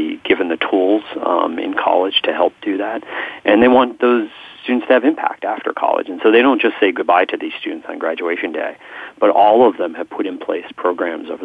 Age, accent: 40-59, American